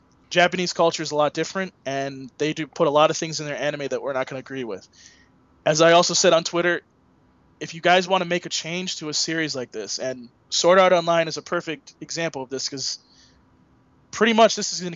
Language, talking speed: English, 235 wpm